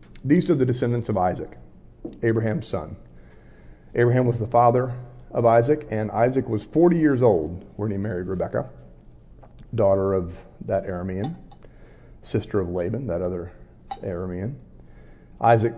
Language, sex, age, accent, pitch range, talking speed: English, male, 40-59, American, 90-115 Hz, 135 wpm